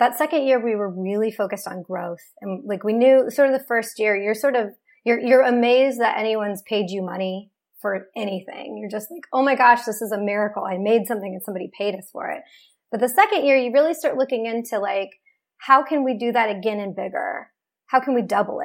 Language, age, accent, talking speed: English, 30-49, American, 230 wpm